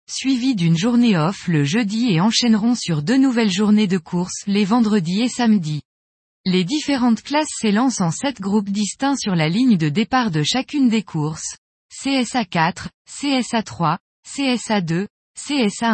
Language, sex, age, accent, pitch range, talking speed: French, female, 20-39, French, 185-245 Hz, 160 wpm